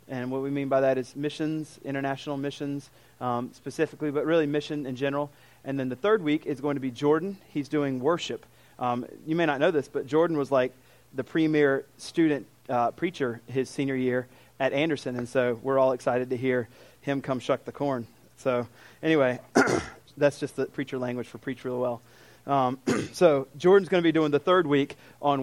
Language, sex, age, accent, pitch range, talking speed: English, male, 30-49, American, 130-150 Hz, 200 wpm